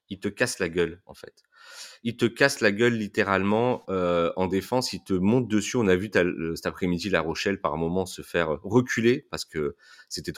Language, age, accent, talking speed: French, 30-49, French, 220 wpm